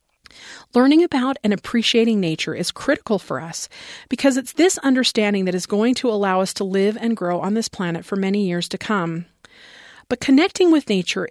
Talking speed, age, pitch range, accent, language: 185 wpm, 40-59, 190-250 Hz, American, English